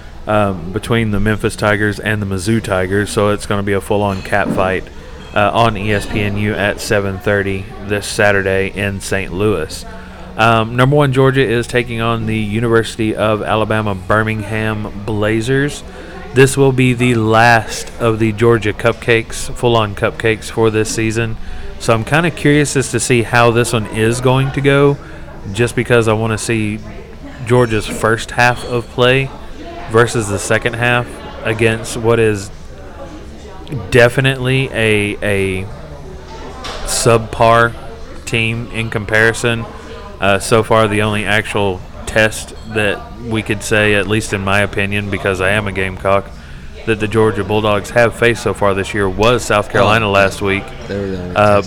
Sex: male